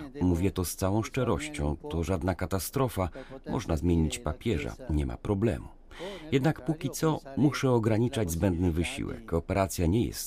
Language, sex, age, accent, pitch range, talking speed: Polish, male, 40-59, native, 85-120 Hz, 140 wpm